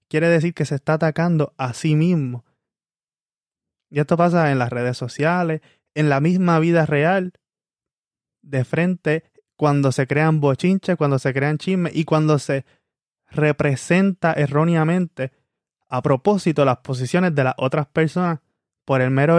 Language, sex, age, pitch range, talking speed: Spanish, male, 20-39, 135-165 Hz, 145 wpm